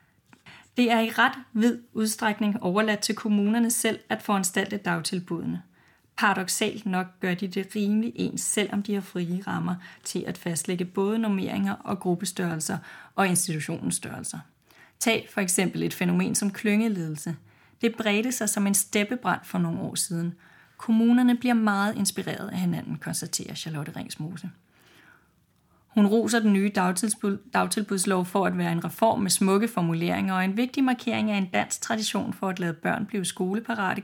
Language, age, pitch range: Danish, 30-49, 180-215 Hz